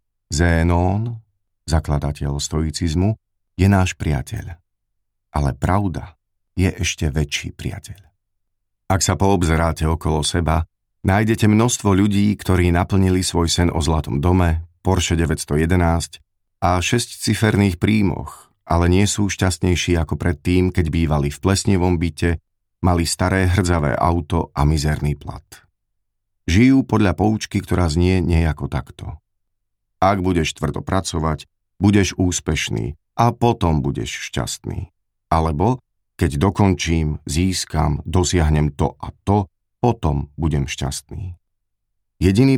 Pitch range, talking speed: 80-100 Hz, 110 wpm